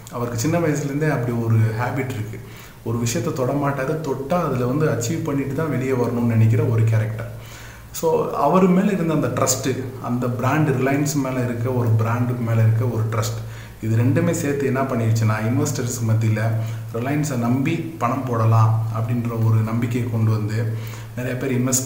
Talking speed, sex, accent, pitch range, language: 155 wpm, male, native, 115-130 Hz, Tamil